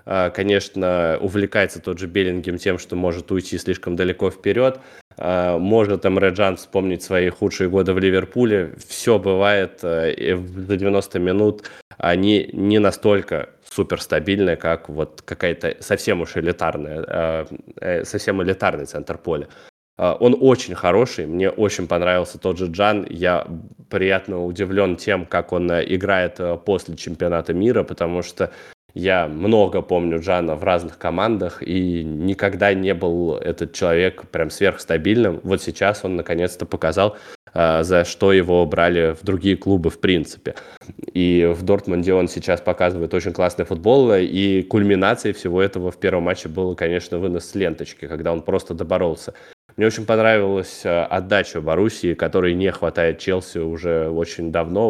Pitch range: 85-100 Hz